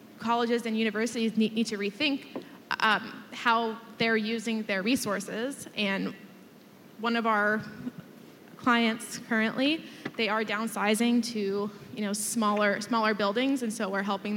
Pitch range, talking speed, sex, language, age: 210-245 Hz, 130 wpm, female, English, 20-39